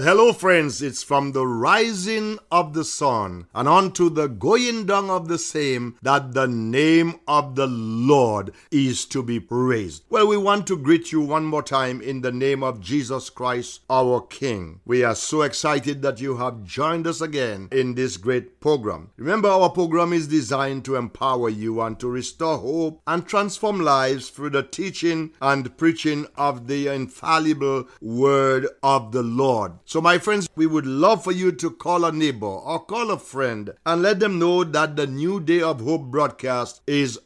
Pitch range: 125-165 Hz